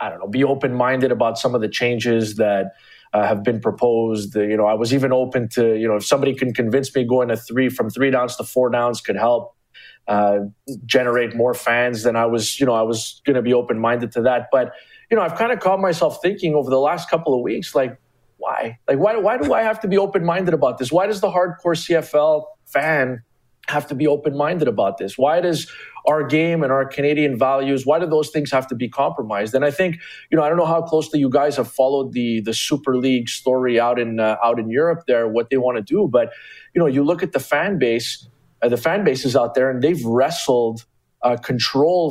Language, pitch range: English, 120-150 Hz